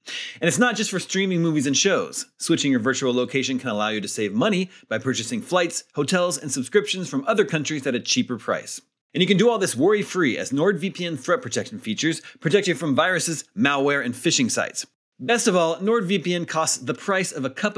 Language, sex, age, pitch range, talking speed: English, male, 30-49, 140-205 Hz, 210 wpm